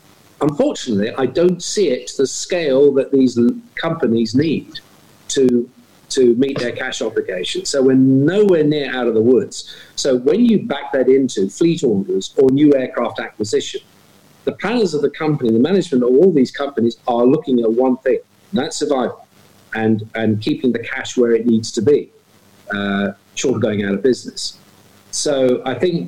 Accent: British